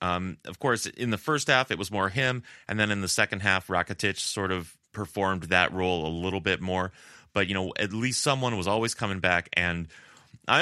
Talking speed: 220 wpm